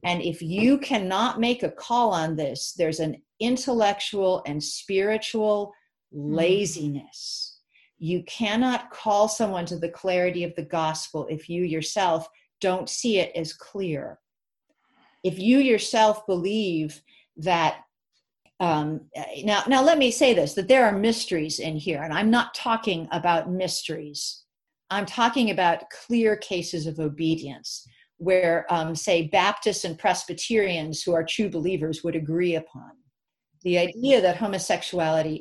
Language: English